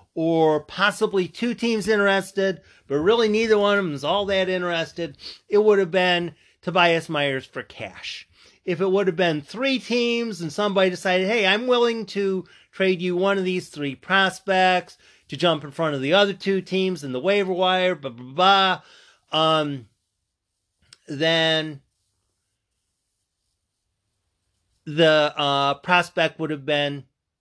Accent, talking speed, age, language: American, 150 wpm, 40-59, English